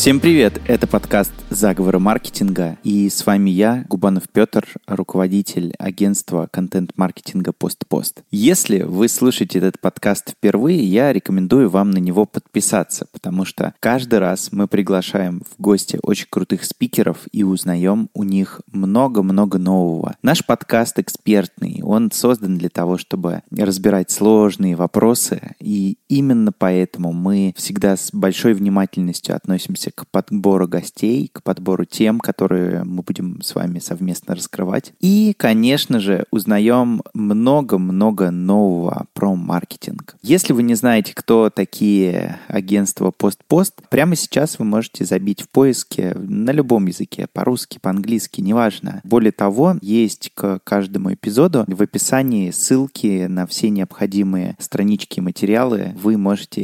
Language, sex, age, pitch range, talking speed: Russian, male, 20-39, 95-115 Hz, 130 wpm